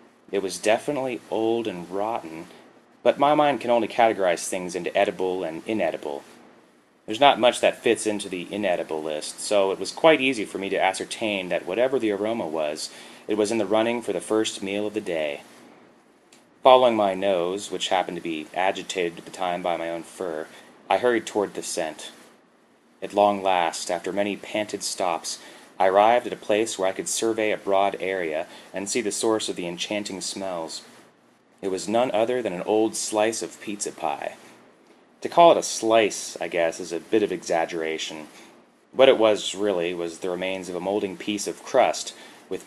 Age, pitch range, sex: 30-49, 90-110 Hz, male